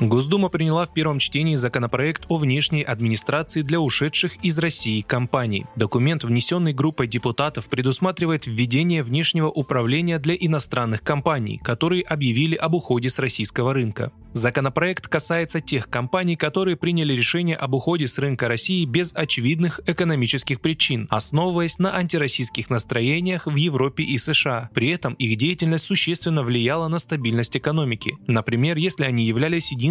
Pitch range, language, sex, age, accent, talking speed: 125-165 Hz, Russian, male, 20-39, native, 140 wpm